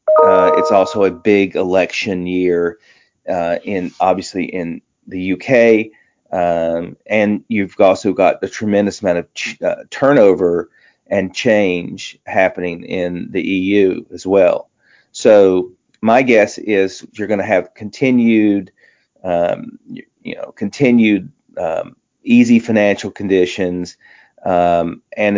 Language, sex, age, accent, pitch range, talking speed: English, male, 40-59, American, 90-110 Hz, 125 wpm